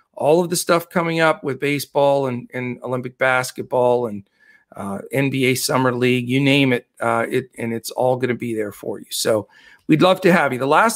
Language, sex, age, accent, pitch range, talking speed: English, male, 50-69, American, 130-165 Hz, 210 wpm